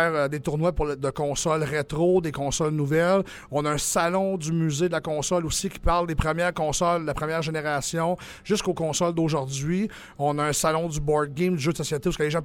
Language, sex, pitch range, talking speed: French, male, 150-185 Hz, 220 wpm